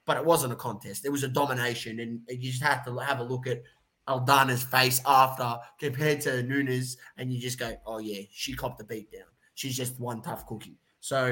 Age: 20-39